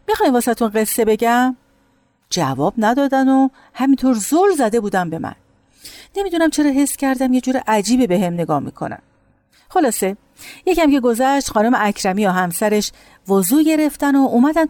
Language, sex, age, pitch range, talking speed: Persian, female, 40-59, 170-255 Hz, 145 wpm